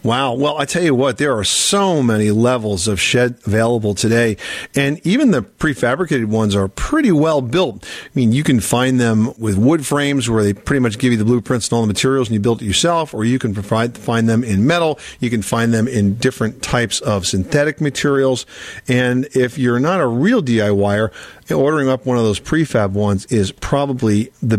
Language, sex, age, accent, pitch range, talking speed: English, male, 50-69, American, 105-135 Hz, 205 wpm